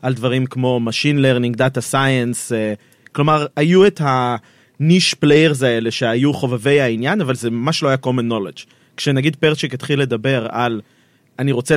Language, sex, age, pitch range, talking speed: Hebrew, male, 30-49, 125-150 Hz, 160 wpm